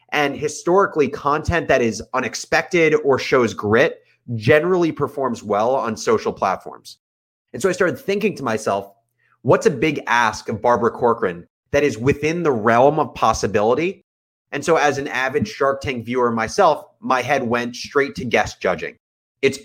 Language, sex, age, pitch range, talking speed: English, male, 30-49, 115-150 Hz, 160 wpm